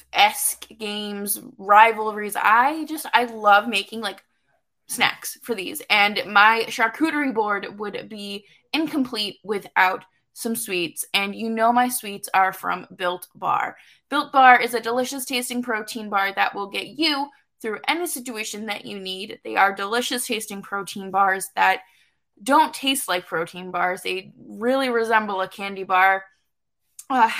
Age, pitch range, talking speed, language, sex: 20-39, 200-255 Hz, 145 wpm, English, female